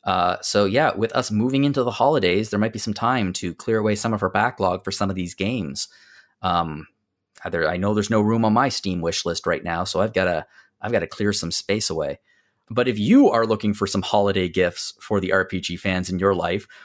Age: 30-49